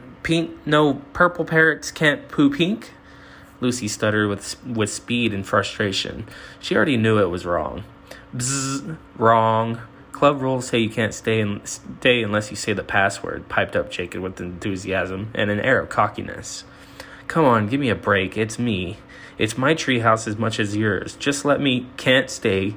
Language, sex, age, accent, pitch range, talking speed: English, male, 20-39, American, 100-120 Hz, 170 wpm